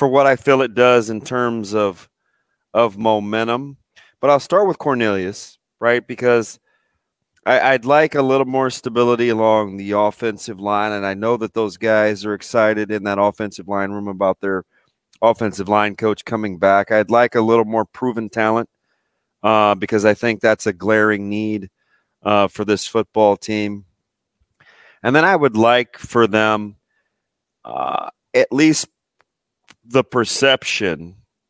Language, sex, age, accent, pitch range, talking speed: English, male, 30-49, American, 105-120 Hz, 155 wpm